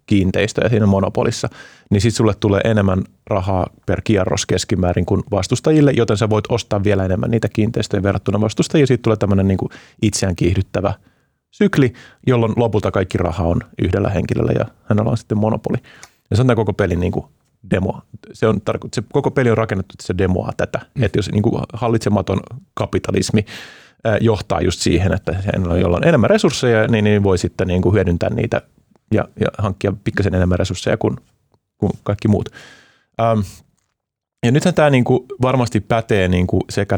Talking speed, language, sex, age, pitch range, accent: 155 wpm, Finnish, male, 30-49, 95-115 Hz, native